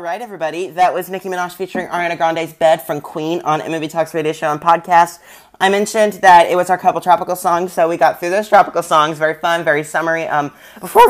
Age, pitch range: 30-49, 140-175 Hz